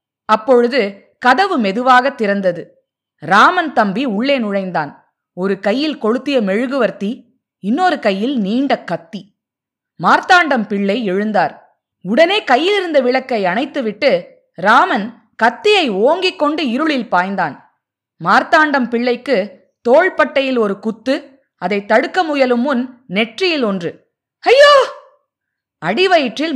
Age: 20-39